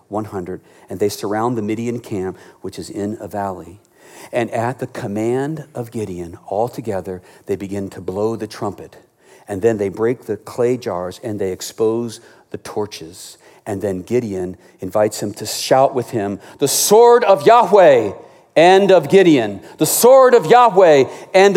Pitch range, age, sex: 110-160 Hz, 50-69, male